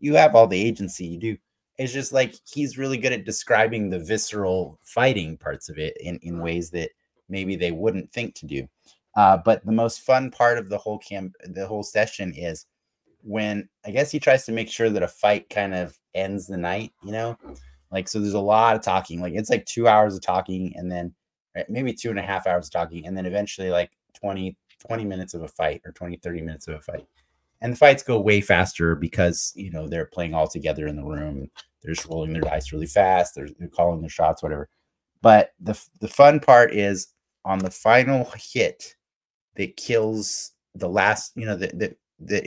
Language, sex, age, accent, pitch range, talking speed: English, male, 30-49, American, 85-115 Hz, 215 wpm